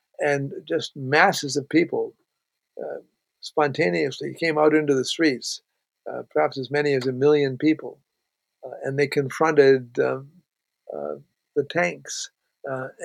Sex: male